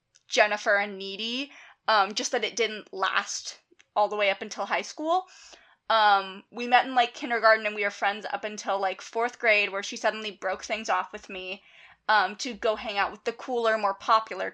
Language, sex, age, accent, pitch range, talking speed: English, female, 20-39, American, 205-250 Hz, 200 wpm